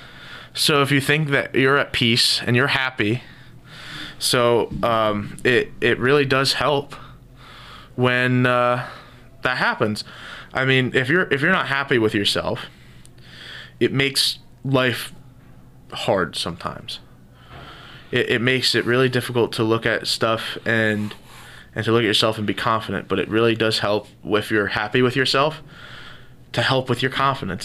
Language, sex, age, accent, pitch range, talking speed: English, male, 20-39, American, 110-130 Hz, 155 wpm